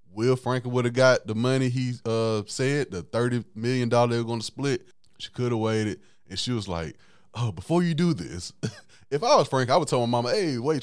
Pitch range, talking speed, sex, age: 105-145 Hz, 235 wpm, male, 20-39